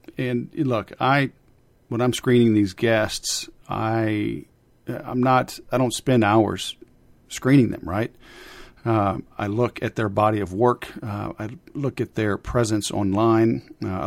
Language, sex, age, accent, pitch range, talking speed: English, male, 50-69, American, 105-120 Hz, 145 wpm